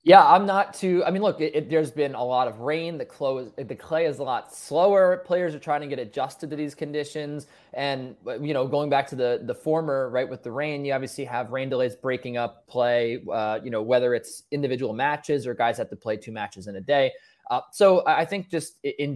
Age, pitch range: 20-39, 125-160 Hz